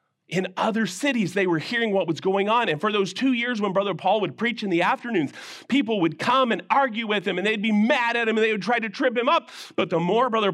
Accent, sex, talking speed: American, male, 275 wpm